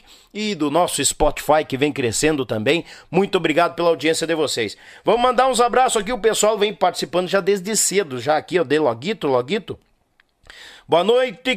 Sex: male